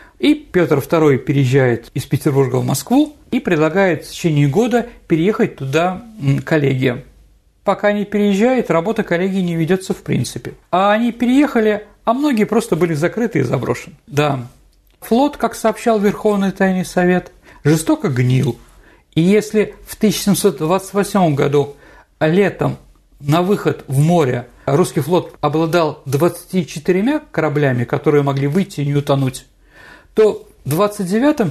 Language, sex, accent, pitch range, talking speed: Russian, male, native, 145-230 Hz, 130 wpm